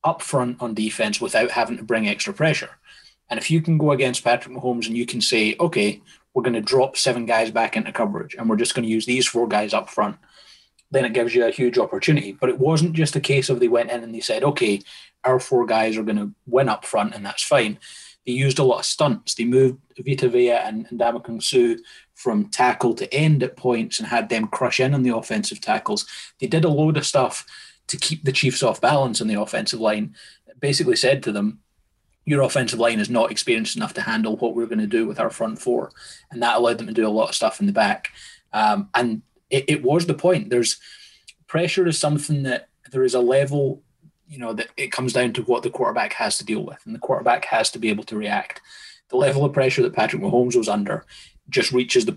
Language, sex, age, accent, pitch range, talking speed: English, male, 30-49, British, 115-155 Hz, 240 wpm